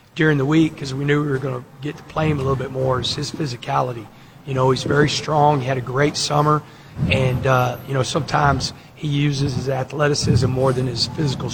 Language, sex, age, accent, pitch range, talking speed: English, male, 40-59, American, 130-145 Hz, 230 wpm